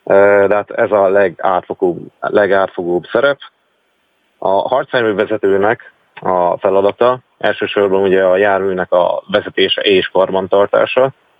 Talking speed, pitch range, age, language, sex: 100 wpm, 95-130 Hz, 30-49, Hungarian, male